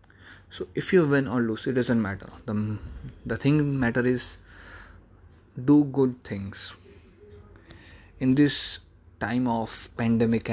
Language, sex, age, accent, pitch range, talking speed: Hindi, male, 20-39, native, 95-125 Hz, 125 wpm